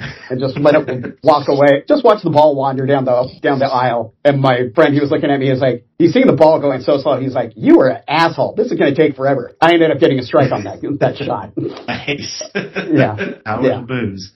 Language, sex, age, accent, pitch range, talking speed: English, male, 50-69, American, 125-145 Hz, 255 wpm